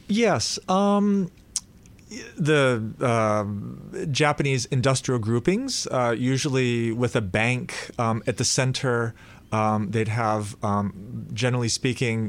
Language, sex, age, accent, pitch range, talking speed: English, male, 30-49, American, 110-140 Hz, 105 wpm